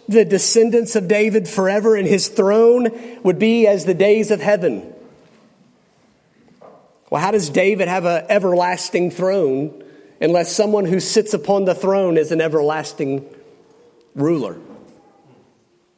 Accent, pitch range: American, 180-220 Hz